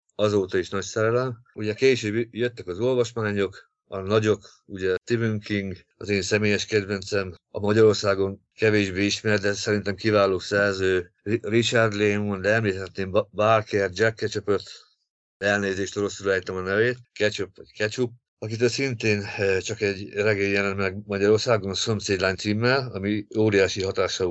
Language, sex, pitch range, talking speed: Hungarian, male, 100-110 Hz, 130 wpm